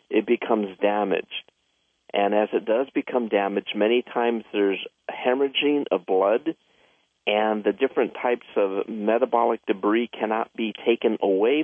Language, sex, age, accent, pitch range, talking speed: English, male, 50-69, American, 110-155 Hz, 135 wpm